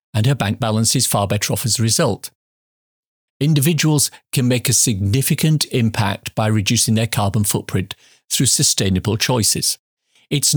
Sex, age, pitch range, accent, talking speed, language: male, 50-69, 105-135 Hz, British, 150 wpm, English